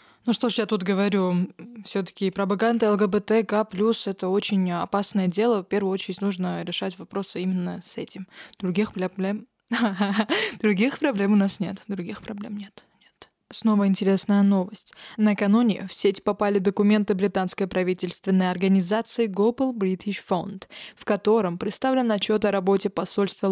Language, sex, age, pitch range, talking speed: Russian, female, 20-39, 190-220 Hz, 135 wpm